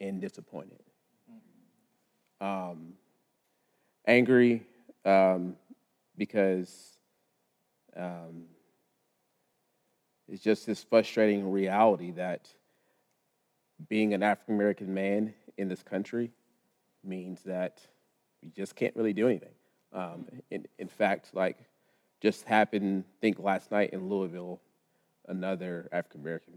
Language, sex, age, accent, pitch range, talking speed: English, male, 30-49, American, 90-110 Hz, 95 wpm